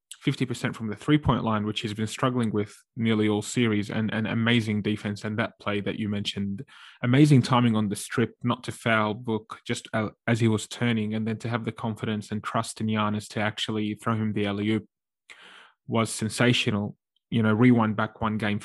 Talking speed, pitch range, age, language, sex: 195 wpm, 105-120 Hz, 20-39, English, male